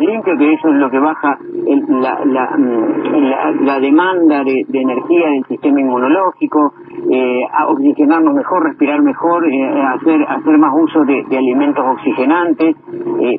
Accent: Argentinian